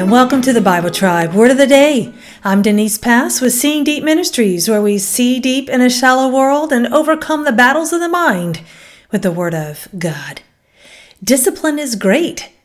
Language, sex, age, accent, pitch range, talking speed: English, female, 40-59, American, 195-265 Hz, 190 wpm